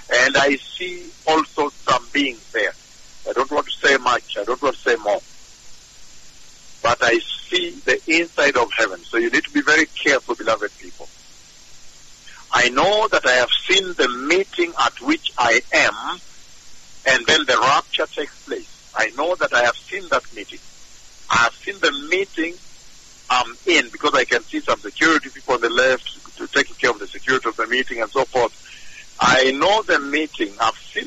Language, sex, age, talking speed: English, male, 60-79, 185 wpm